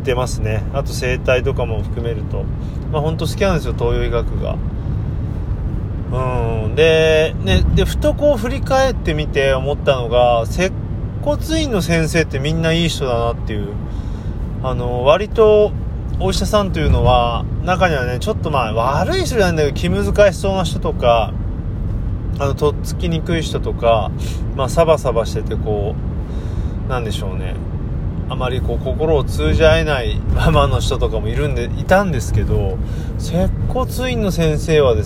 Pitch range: 95-125 Hz